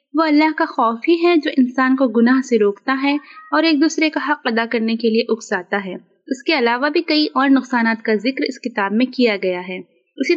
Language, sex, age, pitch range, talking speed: Urdu, female, 20-39, 220-280 Hz, 230 wpm